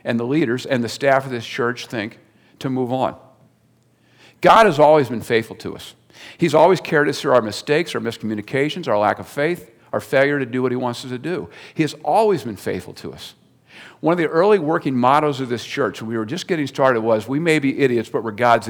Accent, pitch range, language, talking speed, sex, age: American, 120-170 Hz, English, 235 wpm, male, 50-69